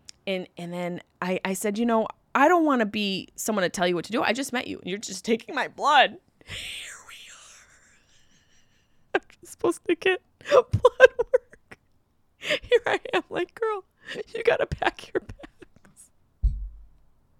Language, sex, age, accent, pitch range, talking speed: English, female, 20-39, American, 190-300 Hz, 175 wpm